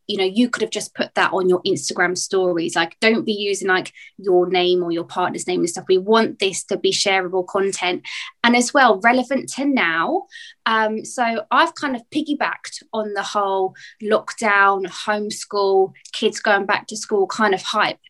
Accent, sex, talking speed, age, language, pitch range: British, female, 190 wpm, 20-39, English, 200-250 Hz